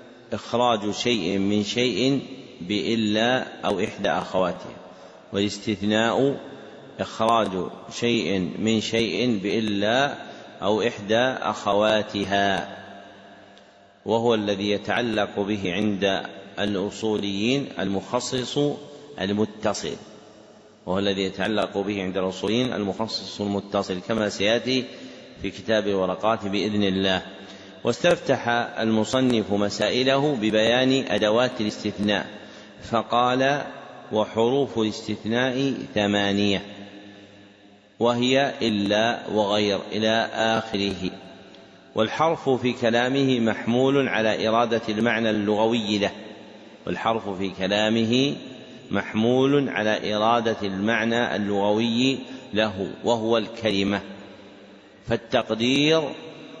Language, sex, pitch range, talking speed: Arabic, male, 100-120 Hz, 80 wpm